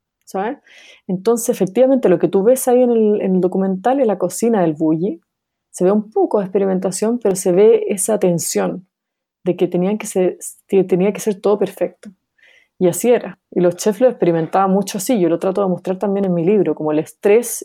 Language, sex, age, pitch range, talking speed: Spanish, female, 30-49, 180-220 Hz, 205 wpm